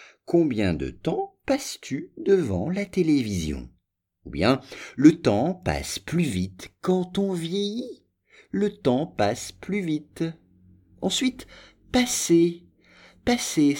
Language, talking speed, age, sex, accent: English, 110 wpm, 50-69, male, French